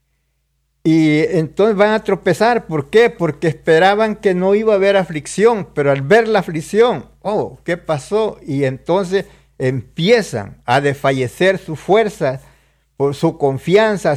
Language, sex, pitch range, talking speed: Spanish, male, 150-200 Hz, 135 wpm